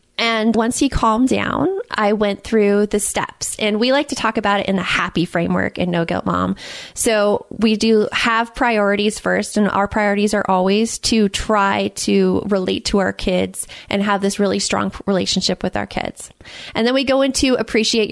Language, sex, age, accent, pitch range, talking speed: English, female, 20-39, American, 190-235 Hz, 190 wpm